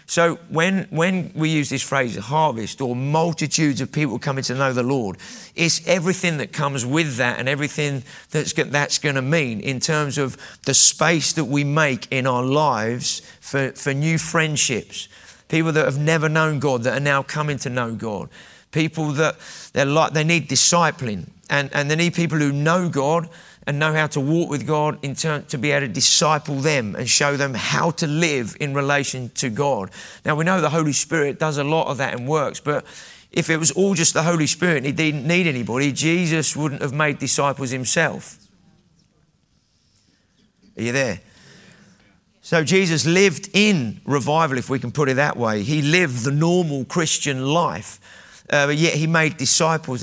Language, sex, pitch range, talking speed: English, male, 135-165 Hz, 190 wpm